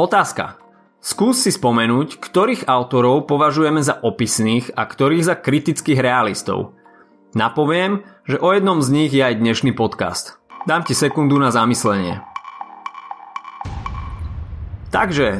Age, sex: 30-49, male